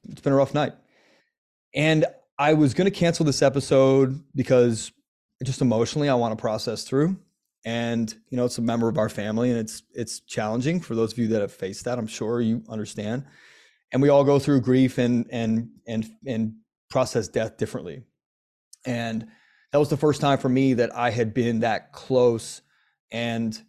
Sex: male